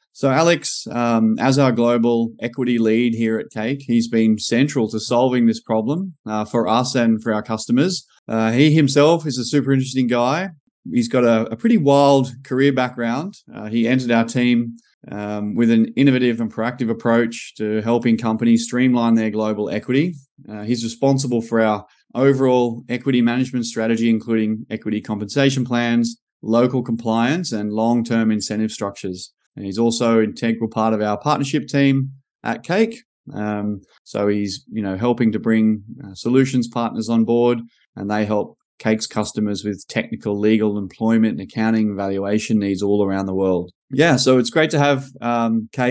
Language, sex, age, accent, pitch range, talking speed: English, male, 20-39, Australian, 110-130 Hz, 165 wpm